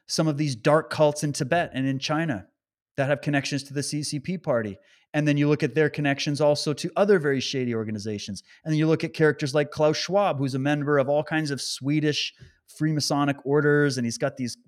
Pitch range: 140-200 Hz